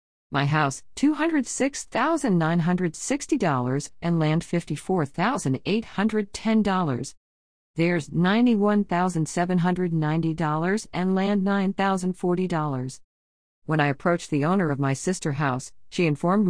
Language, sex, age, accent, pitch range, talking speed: English, female, 50-69, American, 140-185 Hz, 80 wpm